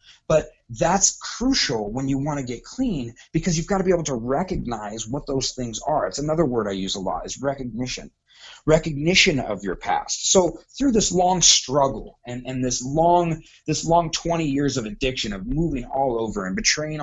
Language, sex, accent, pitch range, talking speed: English, male, American, 130-175 Hz, 195 wpm